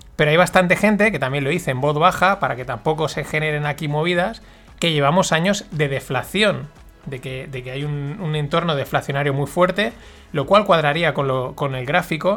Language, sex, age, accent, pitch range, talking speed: Spanish, male, 30-49, Spanish, 150-185 Hz, 195 wpm